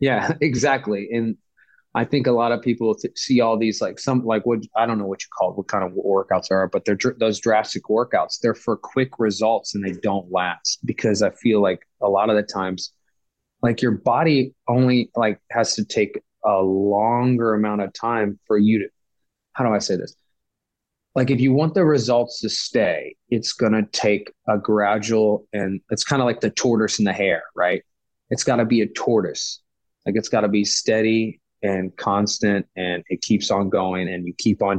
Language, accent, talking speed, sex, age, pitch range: English, American, 205 wpm, male, 20-39, 100-120 Hz